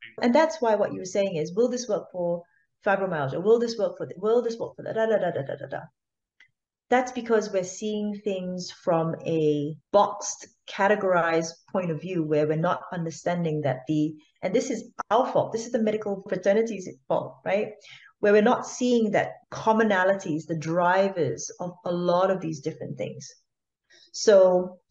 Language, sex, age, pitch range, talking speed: English, female, 30-49, 170-225 Hz, 185 wpm